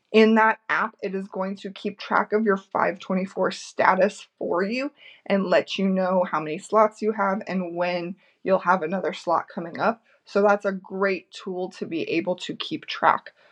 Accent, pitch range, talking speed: American, 180-205 Hz, 190 wpm